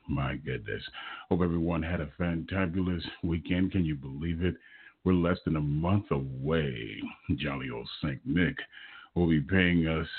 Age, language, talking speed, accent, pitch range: 40-59, English, 155 wpm, American, 70-90 Hz